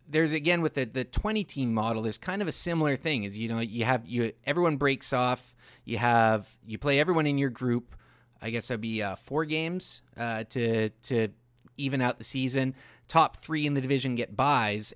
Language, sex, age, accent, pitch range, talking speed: English, male, 30-49, American, 115-150 Hz, 210 wpm